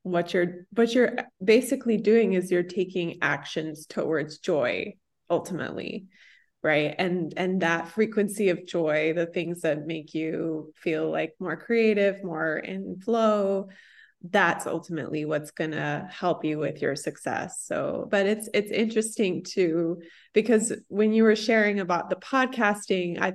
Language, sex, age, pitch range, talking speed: English, female, 20-39, 165-205 Hz, 145 wpm